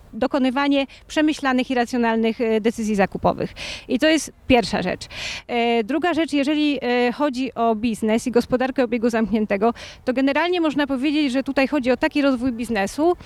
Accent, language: native, Polish